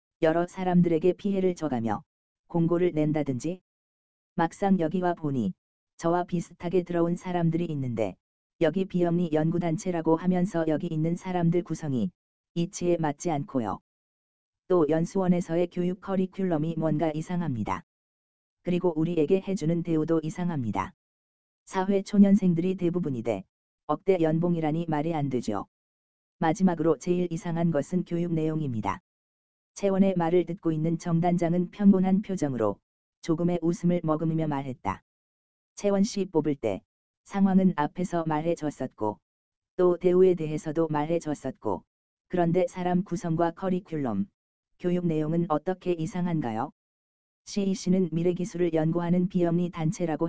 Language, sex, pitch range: Korean, female, 150-180 Hz